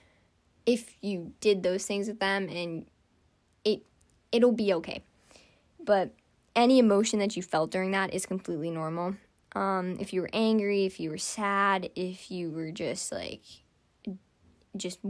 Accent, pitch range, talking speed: American, 185-235 Hz, 150 wpm